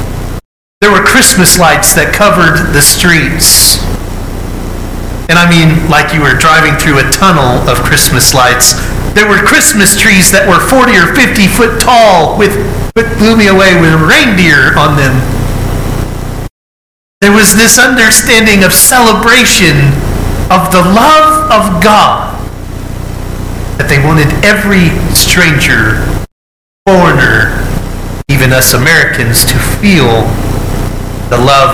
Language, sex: English, male